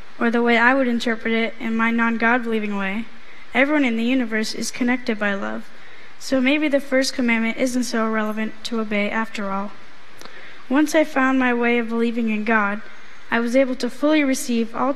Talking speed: 190 wpm